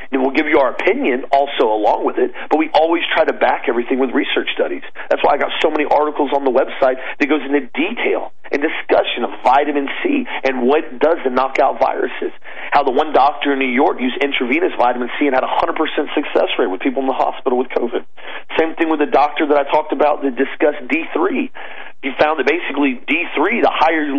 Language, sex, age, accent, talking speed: English, male, 40-59, American, 220 wpm